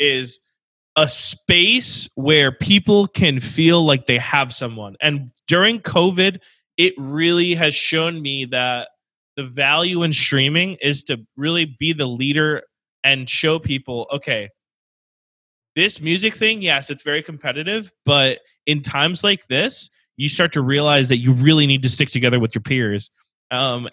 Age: 20-39